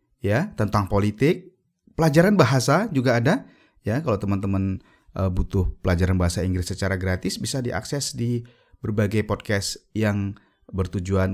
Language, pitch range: Indonesian, 95-135 Hz